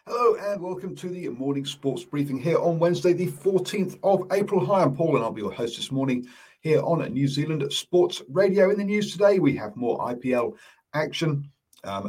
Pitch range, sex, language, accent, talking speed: 110-150 Hz, male, English, British, 205 wpm